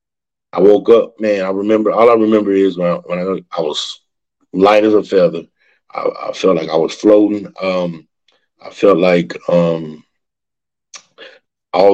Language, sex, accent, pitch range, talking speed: English, male, American, 90-125 Hz, 165 wpm